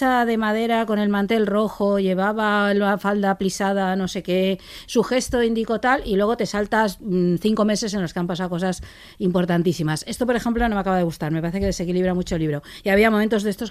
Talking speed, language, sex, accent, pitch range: 220 wpm, Spanish, female, Spanish, 170-210 Hz